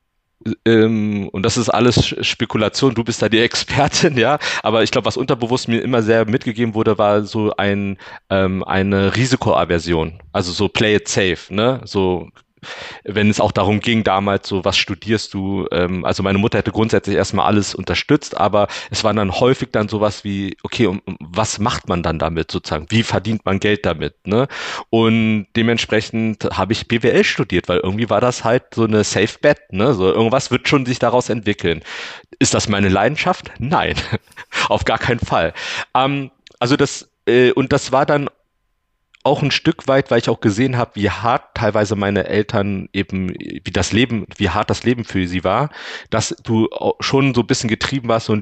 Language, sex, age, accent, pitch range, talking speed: German, male, 40-59, German, 100-120 Hz, 180 wpm